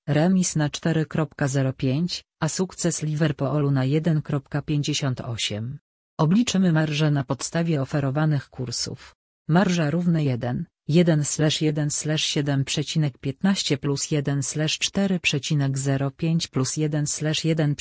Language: Polish